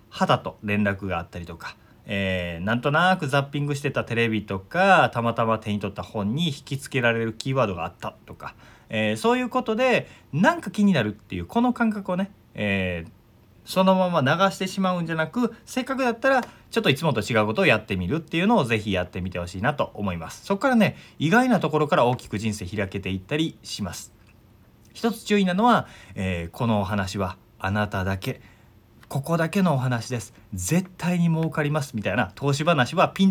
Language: Japanese